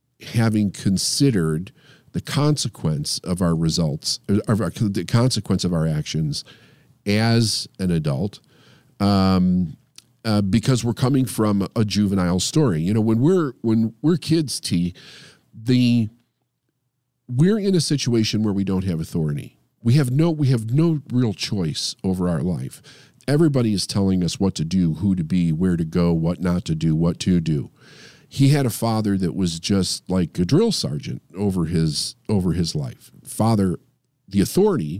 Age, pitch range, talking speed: 40-59, 90-135 Hz, 160 wpm